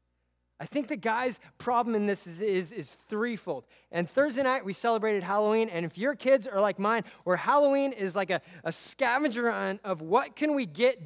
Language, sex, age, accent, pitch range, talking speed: English, male, 20-39, American, 170-245 Hz, 200 wpm